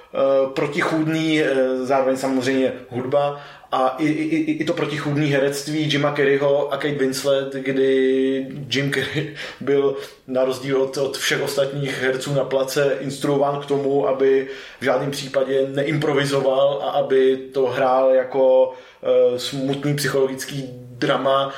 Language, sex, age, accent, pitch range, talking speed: Czech, male, 20-39, native, 130-145 Hz, 120 wpm